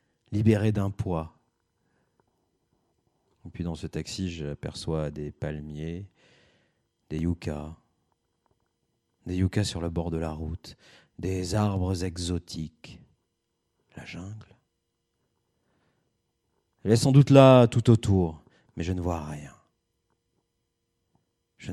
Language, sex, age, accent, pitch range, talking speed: French, male, 40-59, French, 85-115 Hz, 110 wpm